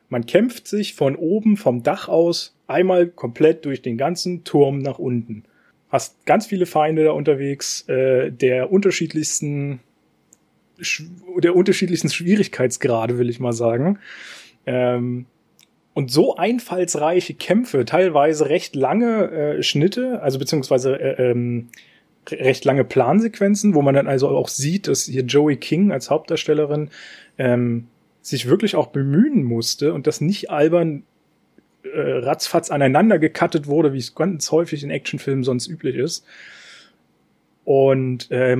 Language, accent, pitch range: German, German, 135-180 Hz